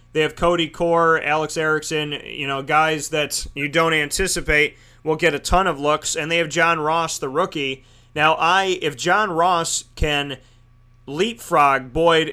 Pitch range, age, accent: 140-170 Hz, 30-49, American